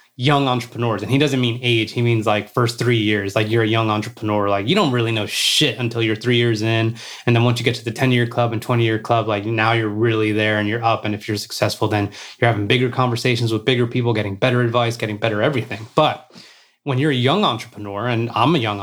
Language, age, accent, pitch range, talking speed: English, 20-39, American, 115-140 Hz, 250 wpm